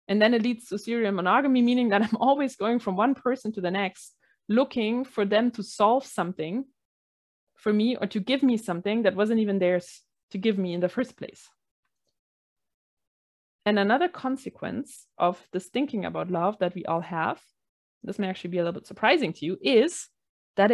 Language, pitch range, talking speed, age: English, 190-245 Hz, 190 wpm, 20-39